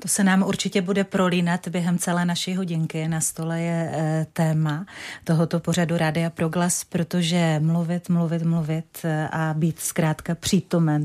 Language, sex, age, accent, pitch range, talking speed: Czech, female, 30-49, native, 160-180 Hz, 145 wpm